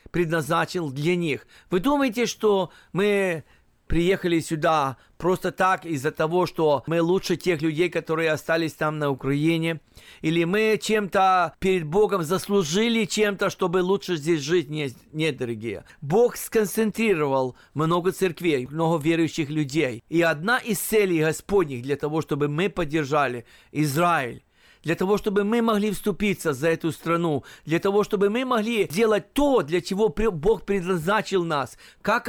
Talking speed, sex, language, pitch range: 140 wpm, male, Russian, 155-195 Hz